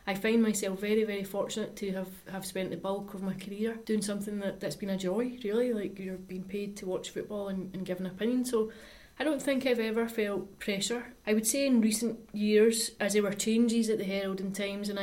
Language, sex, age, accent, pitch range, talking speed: English, female, 30-49, British, 195-220 Hz, 230 wpm